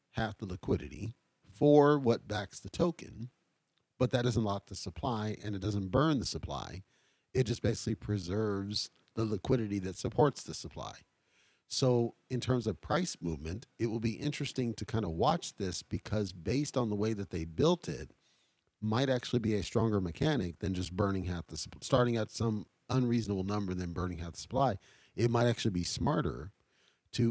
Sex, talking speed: male, 180 wpm